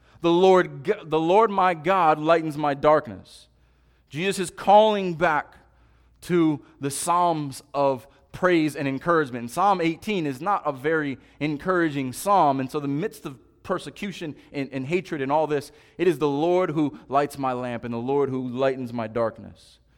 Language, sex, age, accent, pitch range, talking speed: English, male, 30-49, American, 130-175 Hz, 170 wpm